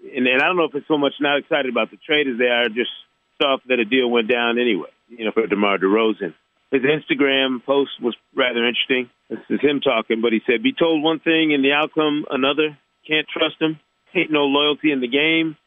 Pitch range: 120-160 Hz